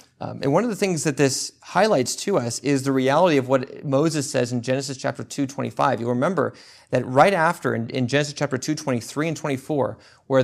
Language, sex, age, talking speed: English, male, 30-49, 215 wpm